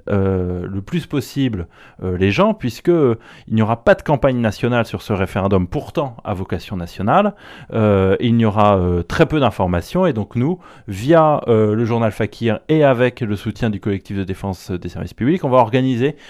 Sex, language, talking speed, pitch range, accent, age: male, French, 195 wpm, 100-135 Hz, French, 30-49